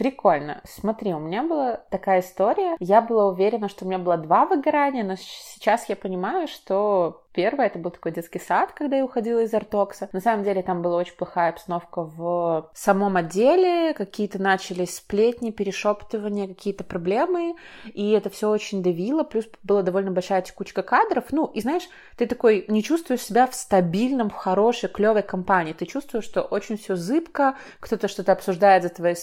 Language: Russian